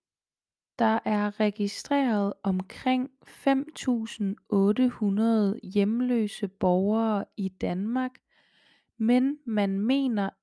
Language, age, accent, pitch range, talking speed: Danish, 20-39, native, 190-235 Hz, 70 wpm